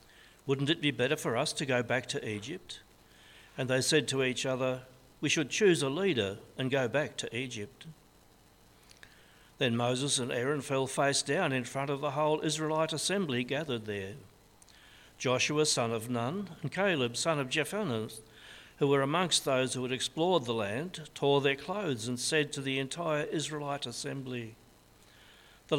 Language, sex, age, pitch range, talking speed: English, male, 60-79, 115-150 Hz, 170 wpm